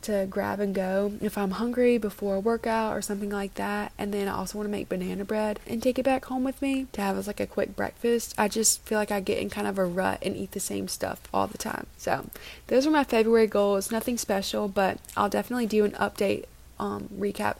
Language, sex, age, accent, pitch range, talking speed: English, female, 20-39, American, 190-225 Hz, 245 wpm